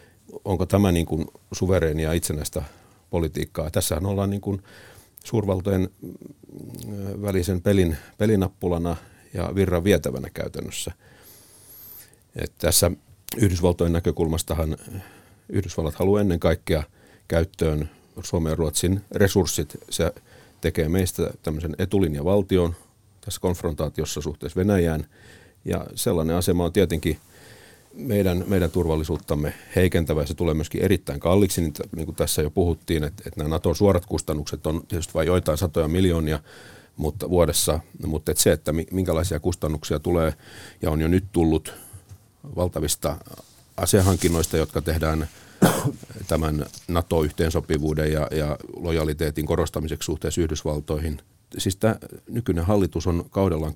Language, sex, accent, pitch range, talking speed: Finnish, male, native, 80-95 Hz, 115 wpm